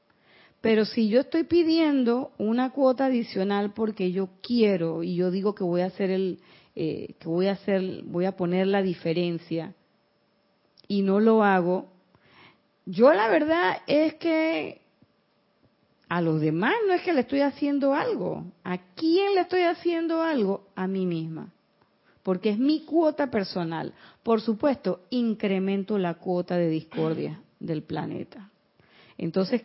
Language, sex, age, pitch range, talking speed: Spanish, female, 40-59, 185-235 Hz, 145 wpm